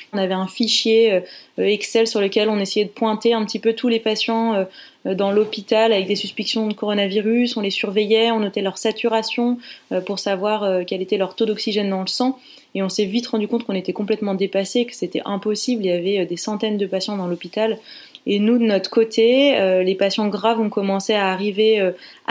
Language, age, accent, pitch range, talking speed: French, 20-39, French, 195-225 Hz, 205 wpm